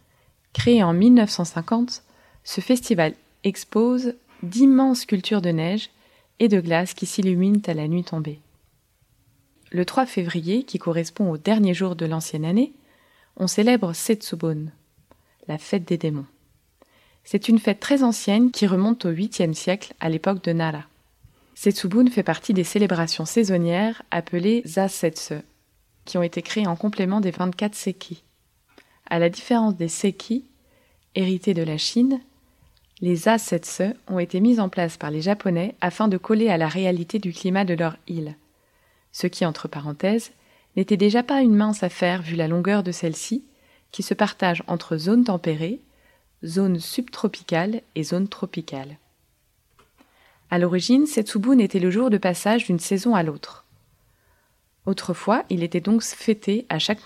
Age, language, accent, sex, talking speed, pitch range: 20-39, French, French, female, 150 wpm, 170-220 Hz